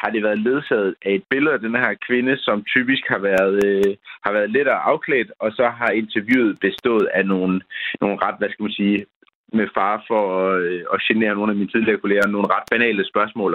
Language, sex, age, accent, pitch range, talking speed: Danish, male, 30-49, native, 100-120 Hz, 215 wpm